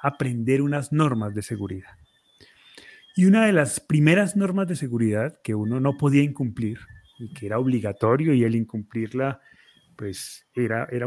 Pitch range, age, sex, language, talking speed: 125-165 Hz, 30-49, male, Spanish, 150 wpm